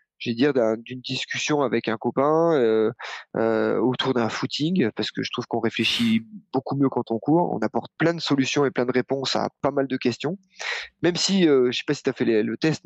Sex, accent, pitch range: male, French, 125-155 Hz